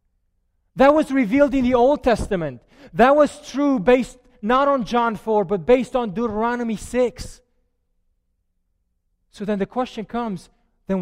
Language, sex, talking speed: English, male, 140 wpm